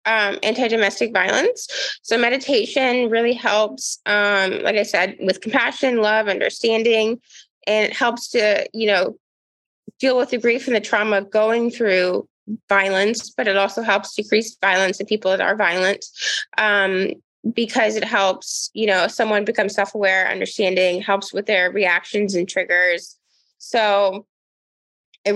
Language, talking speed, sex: English, 150 wpm, female